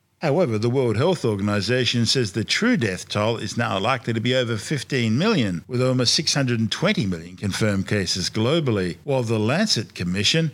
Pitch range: 105-130 Hz